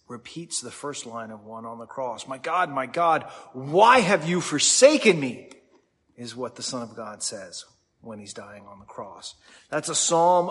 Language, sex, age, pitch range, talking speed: English, male, 30-49, 115-155 Hz, 195 wpm